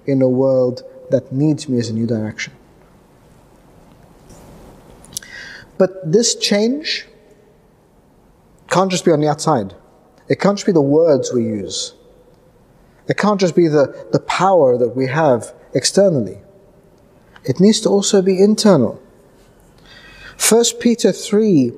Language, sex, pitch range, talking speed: English, male, 150-220 Hz, 130 wpm